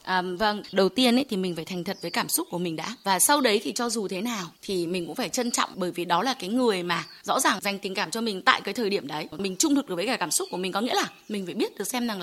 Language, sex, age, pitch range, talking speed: Vietnamese, female, 20-39, 190-260 Hz, 330 wpm